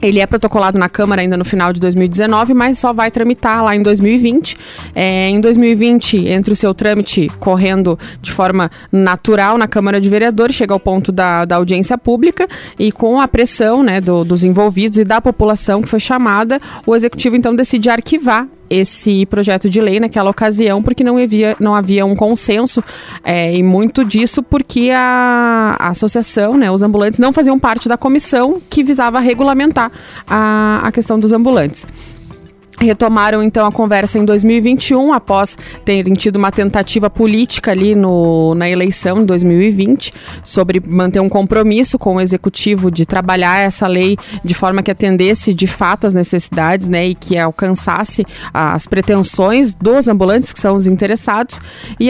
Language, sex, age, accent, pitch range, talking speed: Portuguese, female, 20-39, Brazilian, 190-235 Hz, 160 wpm